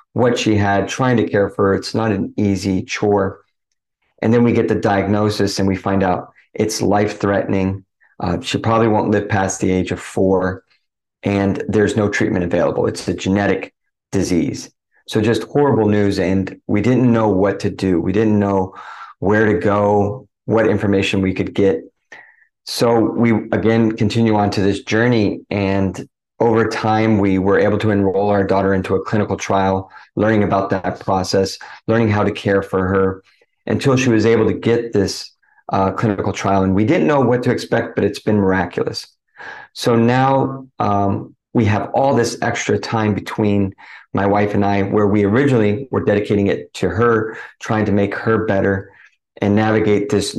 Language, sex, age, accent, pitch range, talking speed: English, male, 30-49, American, 95-110 Hz, 175 wpm